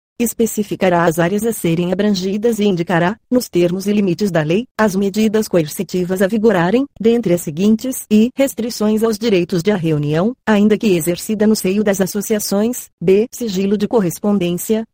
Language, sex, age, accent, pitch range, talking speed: Portuguese, female, 30-49, Brazilian, 180-220 Hz, 170 wpm